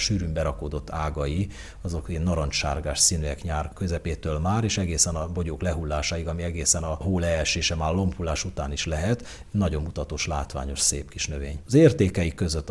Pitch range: 75-90 Hz